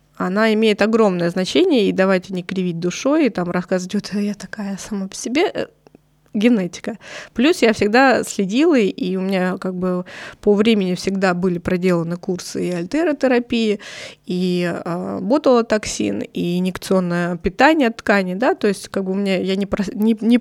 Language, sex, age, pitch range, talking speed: Russian, female, 20-39, 185-225 Hz, 155 wpm